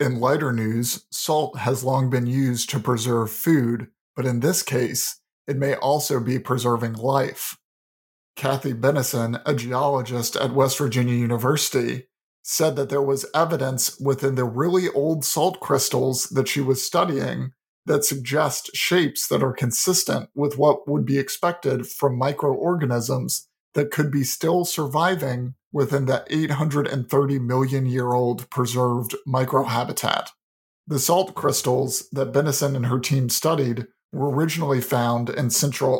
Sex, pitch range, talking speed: male, 125-145 Hz, 135 wpm